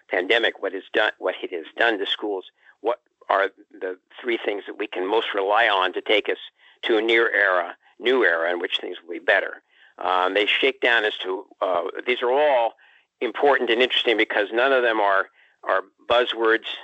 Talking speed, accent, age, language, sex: 200 wpm, American, 50-69, English, male